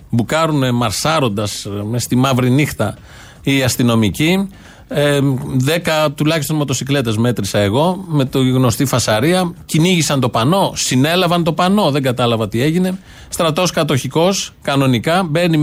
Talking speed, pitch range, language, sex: 120 wpm, 120-175 Hz, Greek, male